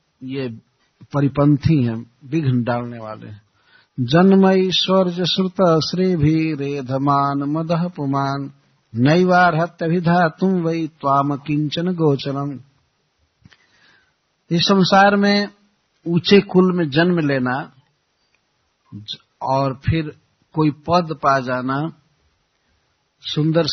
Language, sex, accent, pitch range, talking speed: Hindi, male, native, 130-175 Hz, 90 wpm